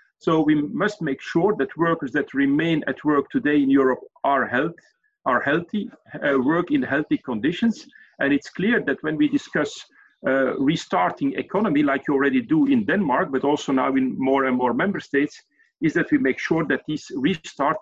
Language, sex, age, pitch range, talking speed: Danish, male, 50-69, 150-235 Hz, 190 wpm